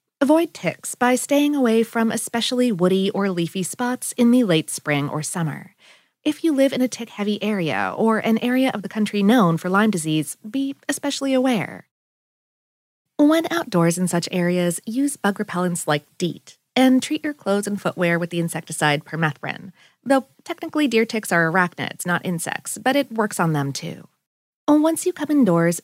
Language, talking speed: English, 175 wpm